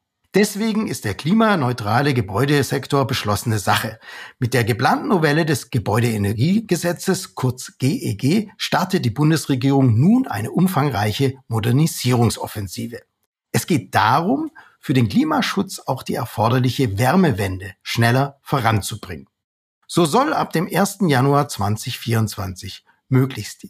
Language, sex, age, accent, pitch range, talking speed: German, male, 60-79, German, 110-170 Hz, 105 wpm